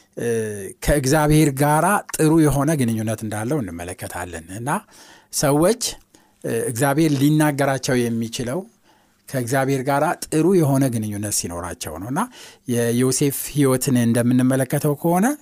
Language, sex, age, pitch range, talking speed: Amharic, male, 60-79, 115-160 Hz, 90 wpm